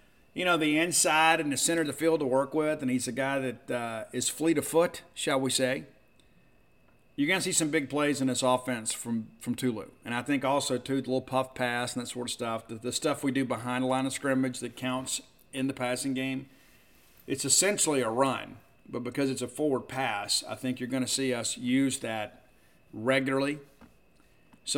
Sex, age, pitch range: male, 50-69, 125-140 Hz